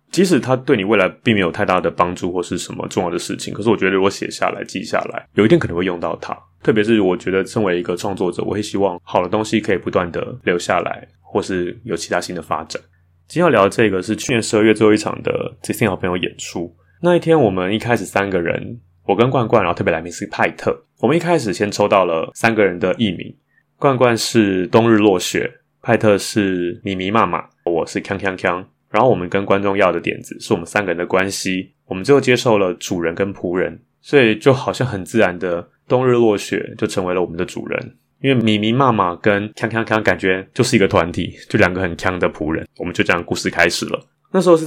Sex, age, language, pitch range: male, 20-39, Chinese, 95-120 Hz